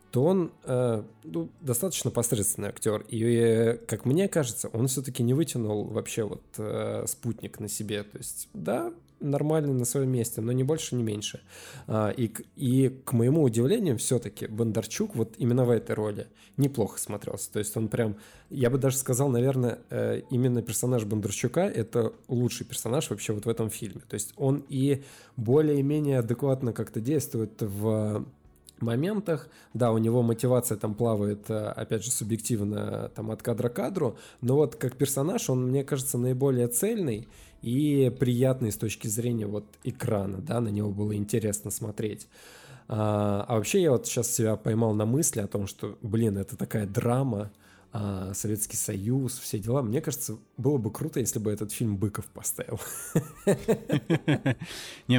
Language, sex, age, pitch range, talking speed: Russian, male, 20-39, 110-135 Hz, 160 wpm